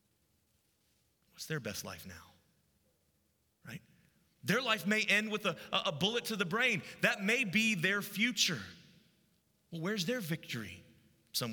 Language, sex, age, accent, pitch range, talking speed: English, male, 30-49, American, 150-205 Hz, 140 wpm